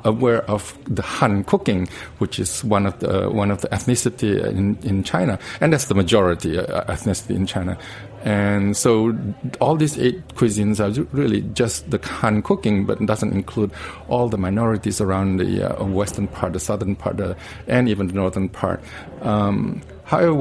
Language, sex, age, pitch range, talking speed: English, male, 50-69, 95-115 Hz, 175 wpm